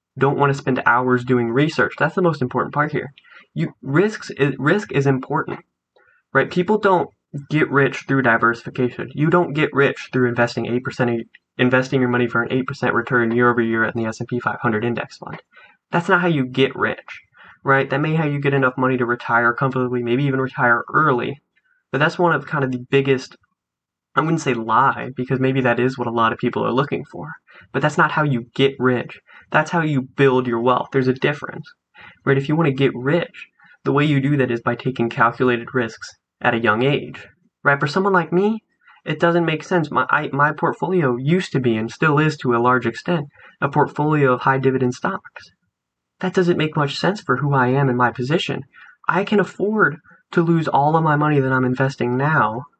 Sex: male